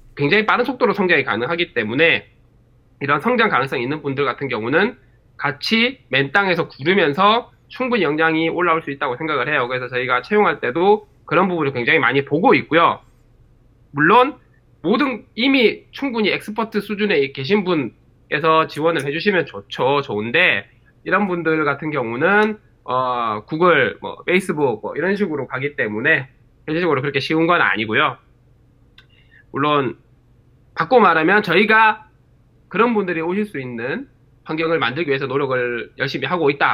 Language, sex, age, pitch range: Korean, male, 20-39, 125-205 Hz